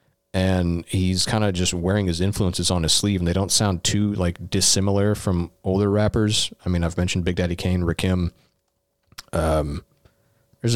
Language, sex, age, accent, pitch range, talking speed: English, male, 30-49, American, 80-100 Hz, 175 wpm